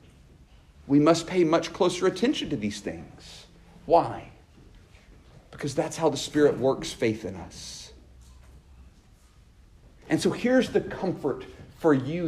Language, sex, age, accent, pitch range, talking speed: English, male, 50-69, American, 105-165 Hz, 125 wpm